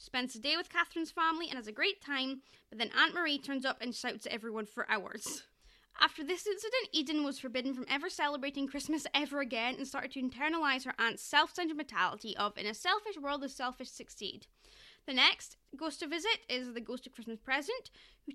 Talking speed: 205 wpm